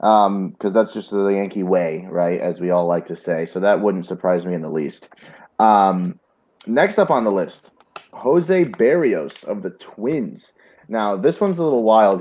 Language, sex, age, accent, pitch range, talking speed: English, male, 30-49, American, 90-110 Hz, 190 wpm